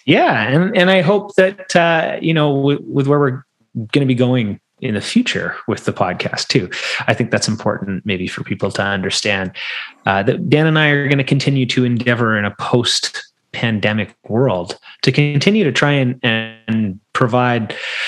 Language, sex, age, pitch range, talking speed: English, male, 30-49, 105-130 Hz, 185 wpm